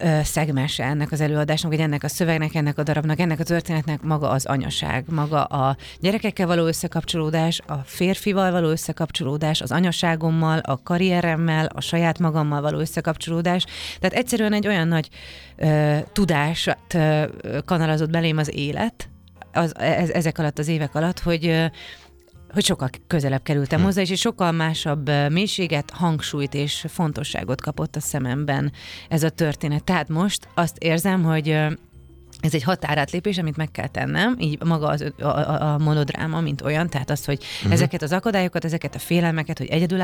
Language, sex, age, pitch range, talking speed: Hungarian, female, 30-49, 150-175 Hz, 160 wpm